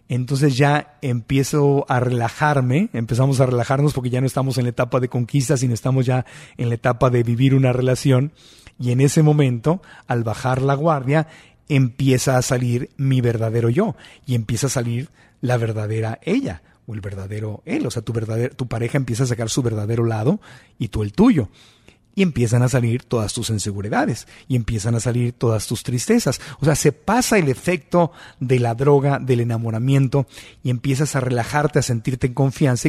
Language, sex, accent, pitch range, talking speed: Spanish, male, Mexican, 120-150 Hz, 180 wpm